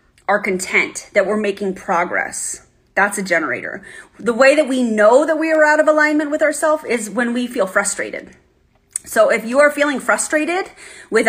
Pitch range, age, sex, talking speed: 195-260 Hz, 30-49, female, 180 wpm